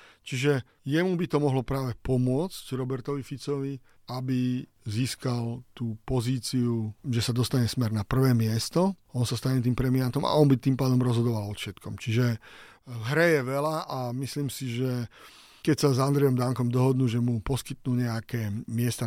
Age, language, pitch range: 40-59, Slovak, 120-145 Hz